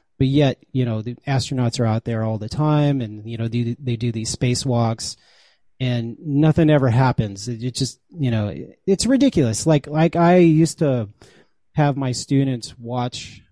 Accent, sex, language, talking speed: American, male, English, 175 wpm